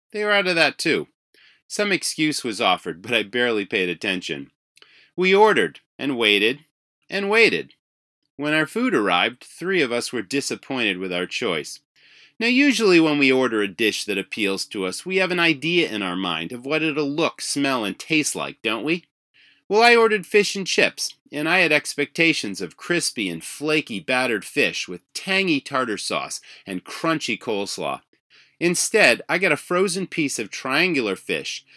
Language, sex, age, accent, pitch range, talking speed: English, male, 30-49, American, 120-185 Hz, 175 wpm